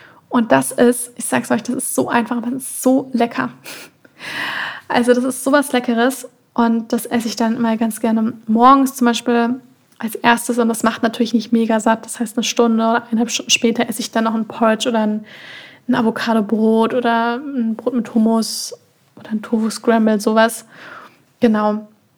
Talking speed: 185 wpm